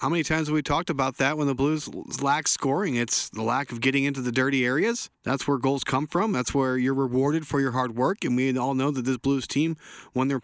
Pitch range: 125-155 Hz